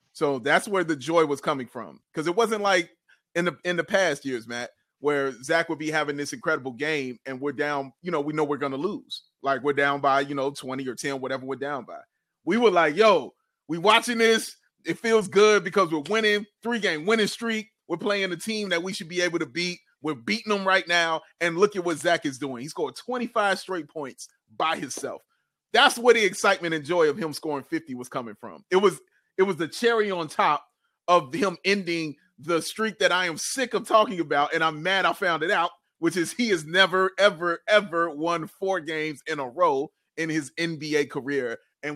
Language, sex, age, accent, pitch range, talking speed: English, male, 30-49, American, 145-190 Hz, 225 wpm